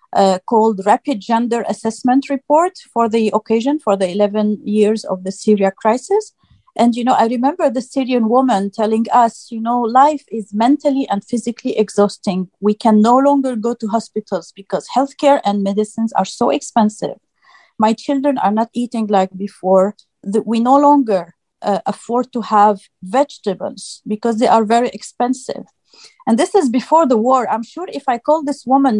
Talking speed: 170 wpm